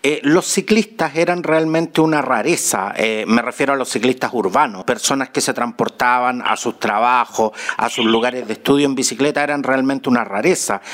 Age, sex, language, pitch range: 50-69, male, Spanish, 130-165 Hz